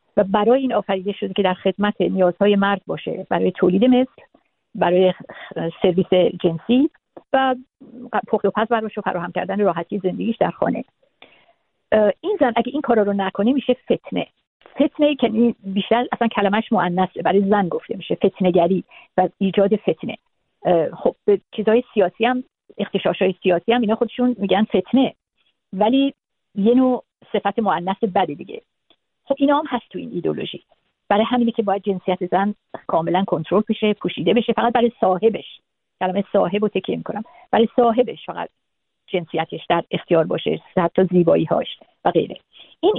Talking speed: 150 wpm